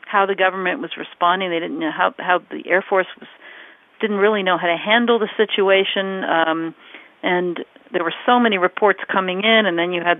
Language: English